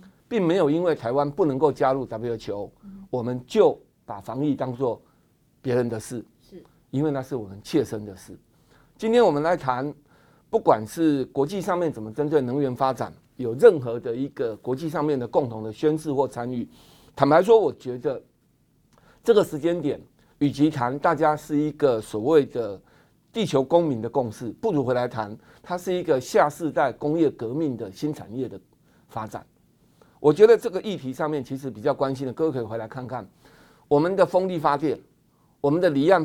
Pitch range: 130-170 Hz